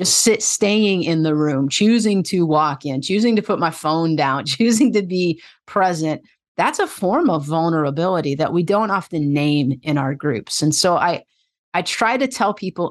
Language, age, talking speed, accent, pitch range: English, 30-49, 185 wpm, American, 155-225 Hz